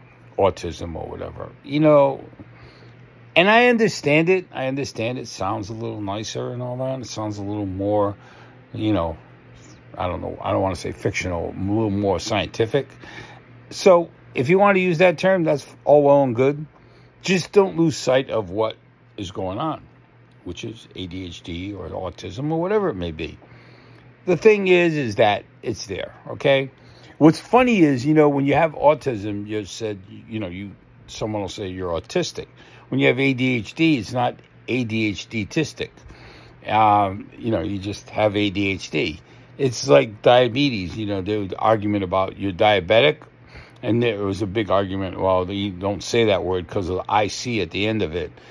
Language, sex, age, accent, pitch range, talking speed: English, male, 50-69, American, 100-135 Hz, 175 wpm